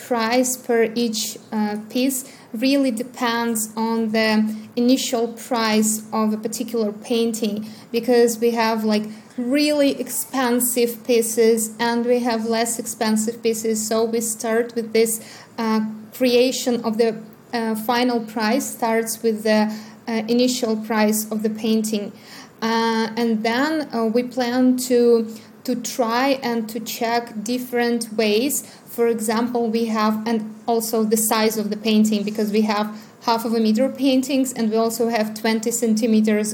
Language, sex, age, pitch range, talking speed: English, female, 20-39, 220-245 Hz, 145 wpm